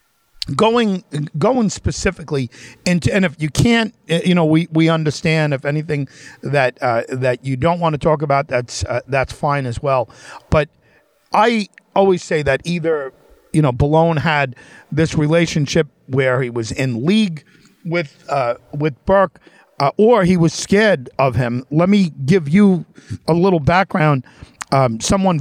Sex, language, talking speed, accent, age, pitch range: male, English, 160 wpm, American, 50-69, 125-165 Hz